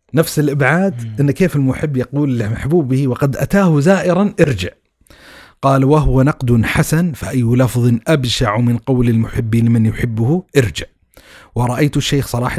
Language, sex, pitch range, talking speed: Arabic, male, 120-155 Hz, 130 wpm